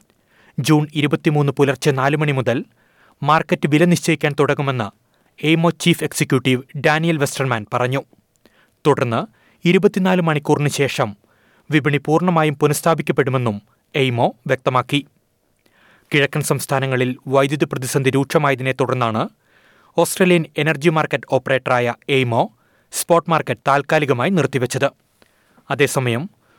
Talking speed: 90 wpm